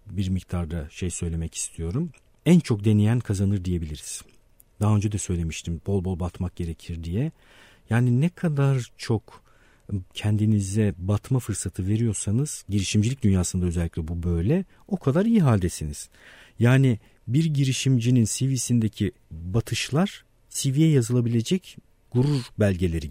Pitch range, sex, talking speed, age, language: 90-130 Hz, male, 115 wpm, 50-69, Turkish